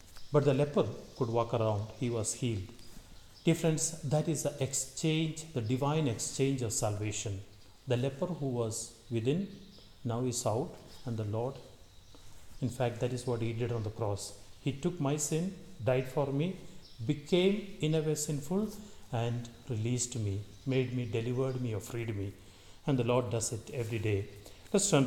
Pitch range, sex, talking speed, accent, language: 105-135 Hz, male, 170 wpm, Indian, English